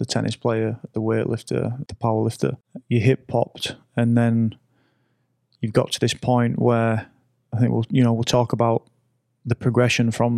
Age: 20-39